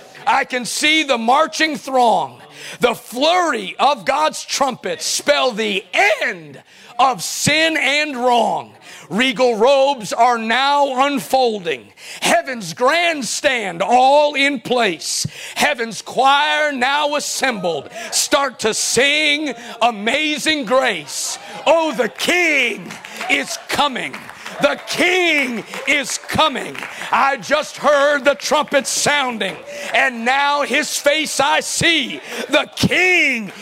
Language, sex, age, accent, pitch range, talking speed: English, male, 40-59, American, 240-295 Hz, 105 wpm